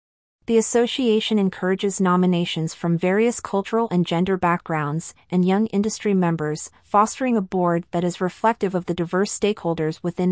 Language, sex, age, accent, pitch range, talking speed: English, female, 30-49, American, 170-200 Hz, 145 wpm